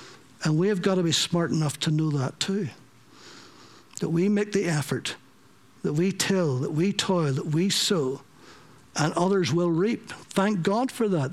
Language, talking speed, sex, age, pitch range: English, 180 wpm, male, 60-79, 155-195 Hz